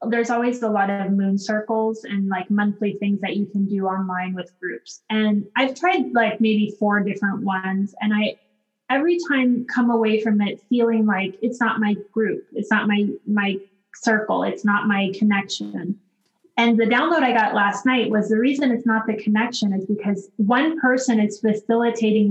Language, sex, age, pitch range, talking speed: English, female, 20-39, 210-235 Hz, 185 wpm